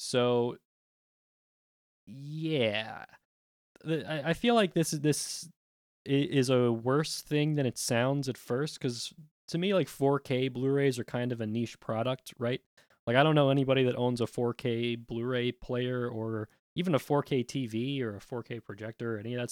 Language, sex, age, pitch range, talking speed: English, male, 20-39, 110-140 Hz, 180 wpm